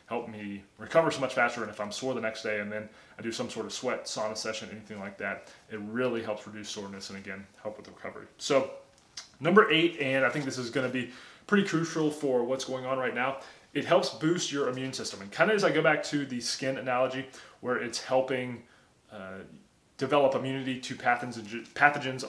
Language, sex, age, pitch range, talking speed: English, male, 20-39, 110-135 Hz, 210 wpm